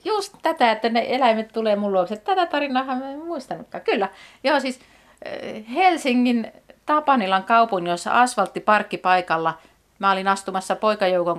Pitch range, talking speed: 175-220 Hz, 120 wpm